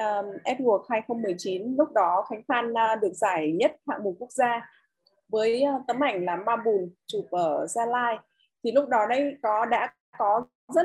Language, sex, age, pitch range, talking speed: Vietnamese, female, 20-39, 195-280 Hz, 190 wpm